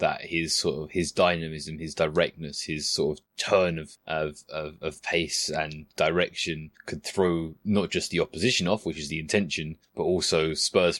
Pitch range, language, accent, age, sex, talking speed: 80-95 Hz, English, British, 20-39, male, 180 wpm